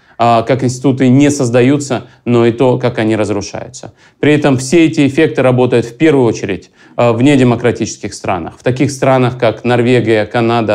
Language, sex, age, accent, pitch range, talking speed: Russian, male, 30-49, native, 115-150 Hz, 155 wpm